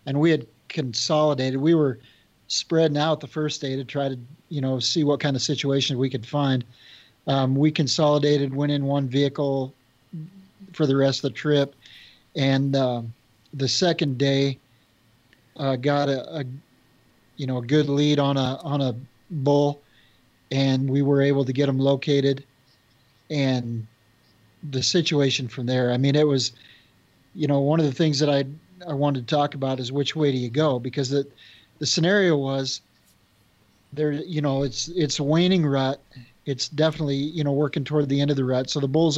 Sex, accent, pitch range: male, American, 130-150 Hz